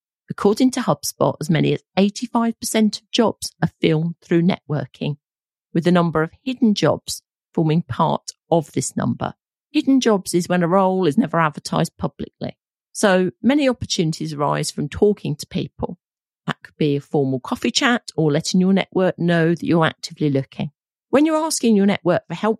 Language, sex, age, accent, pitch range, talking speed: English, female, 40-59, British, 160-220 Hz, 175 wpm